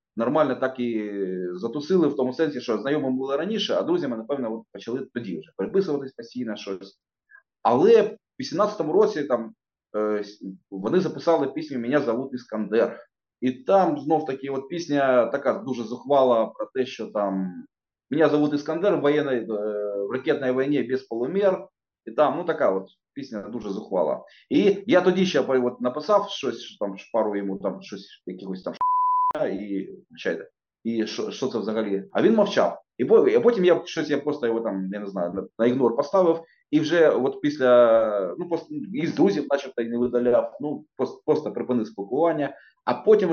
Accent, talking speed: native, 170 wpm